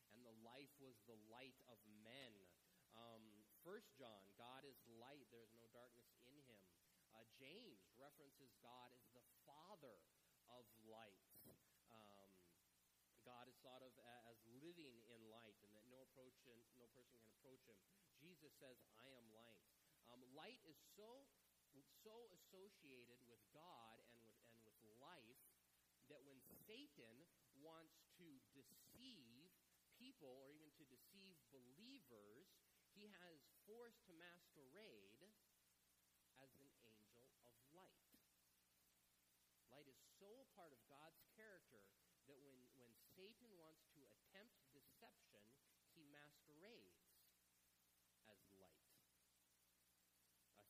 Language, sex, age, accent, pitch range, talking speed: English, male, 30-49, American, 110-155 Hz, 125 wpm